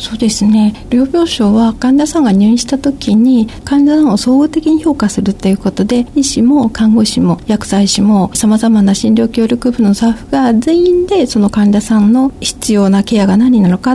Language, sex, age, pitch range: Japanese, female, 50-69, 205-265 Hz